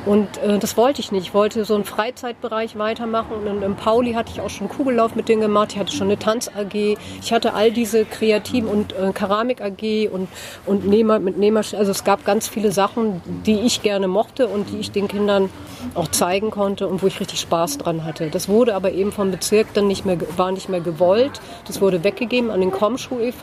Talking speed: 220 wpm